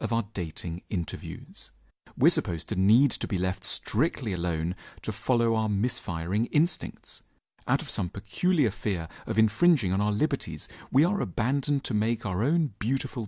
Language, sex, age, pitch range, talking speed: English, male, 40-59, 95-125 Hz, 165 wpm